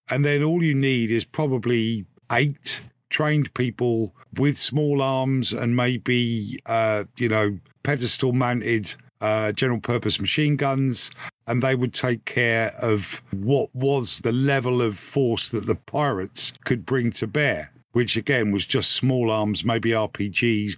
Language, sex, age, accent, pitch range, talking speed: English, male, 50-69, British, 115-140 Hz, 150 wpm